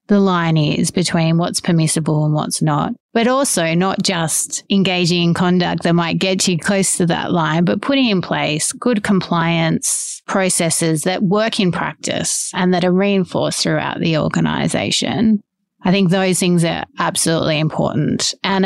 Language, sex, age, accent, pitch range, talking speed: English, female, 30-49, Australian, 165-200 Hz, 160 wpm